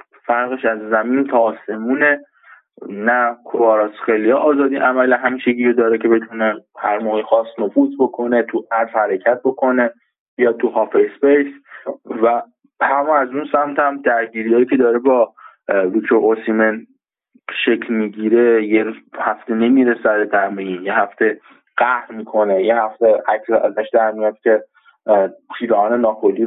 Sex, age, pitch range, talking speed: male, 20-39, 115-145 Hz, 130 wpm